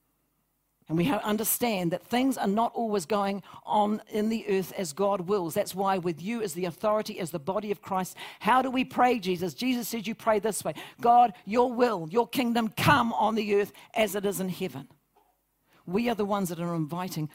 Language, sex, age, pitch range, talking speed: English, female, 50-69, 170-210 Hz, 210 wpm